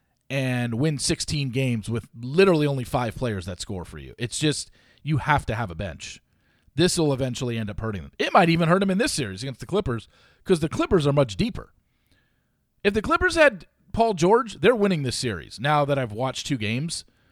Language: English